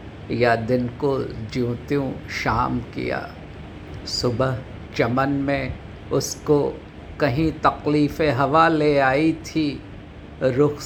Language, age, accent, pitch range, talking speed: Hindi, 50-69, native, 110-145 Hz, 95 wpm